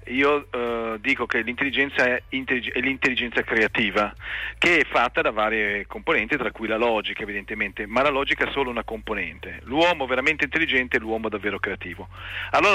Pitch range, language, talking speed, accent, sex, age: 110-130 Hz, Italian, 165 wpm, native, male, 40-59